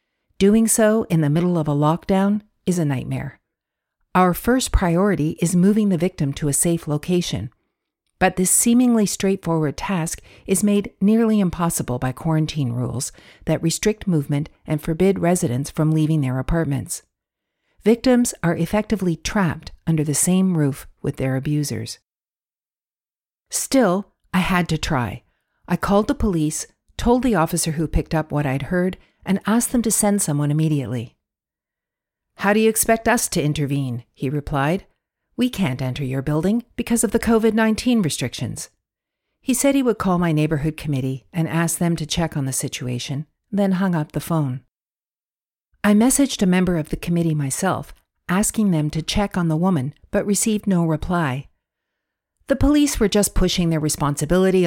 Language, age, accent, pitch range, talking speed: English, 50-69, American, 145-200 Hz, 160 wpm